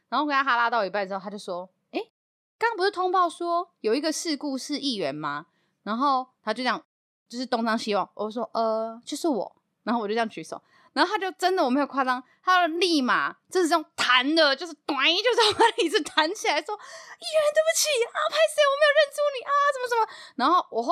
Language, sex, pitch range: Chinese, female, 210-310 Hz